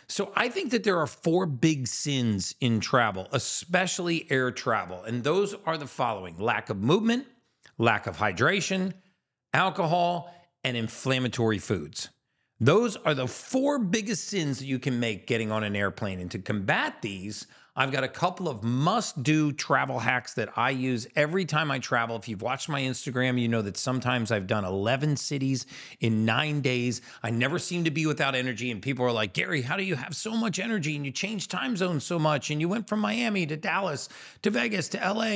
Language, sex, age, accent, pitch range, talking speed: English, male, 40-59, American, 120-185 Hz, 195 wpm